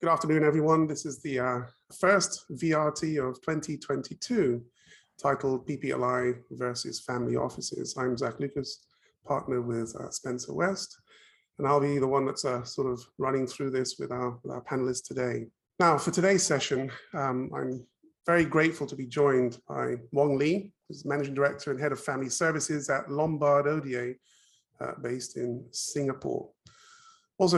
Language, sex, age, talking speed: English, male, 30-49, 155 wpm